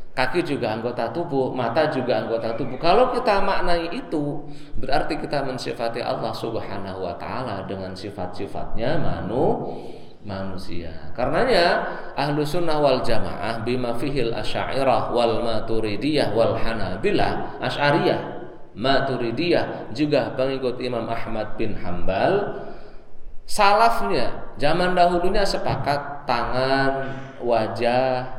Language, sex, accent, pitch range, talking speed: Indonesian, male, native, 105-145 Hz, 105 wpm